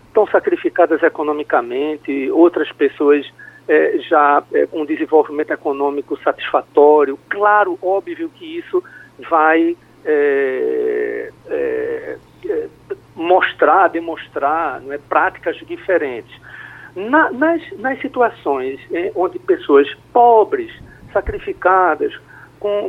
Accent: Brazilian